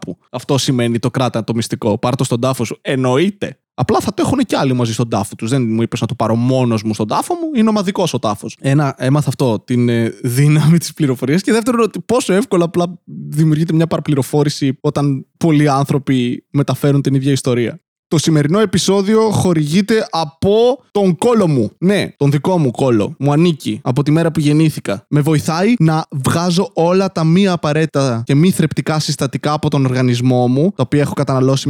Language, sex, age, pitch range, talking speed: Greek, male, 20-39, 135-190 Hz, 185 wpm